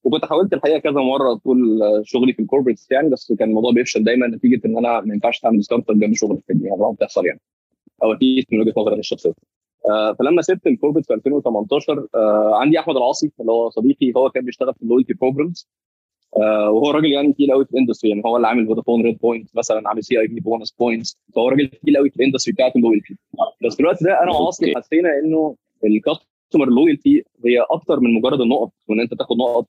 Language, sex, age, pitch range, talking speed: Arabic, male, 20-39, 110-140 Hz, 220 wpm